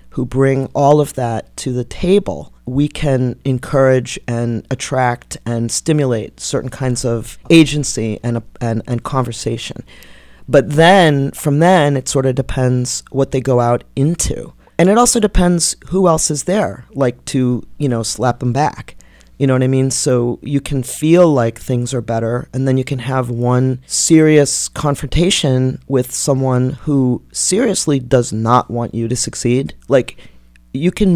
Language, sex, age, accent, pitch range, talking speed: English, male, 40-59, American, 115-140 Hz, 165 wpm